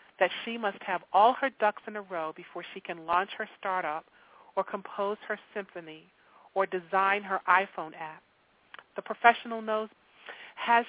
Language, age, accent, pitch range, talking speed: English, 40-59, American, 170-220 Hz, 160 wpm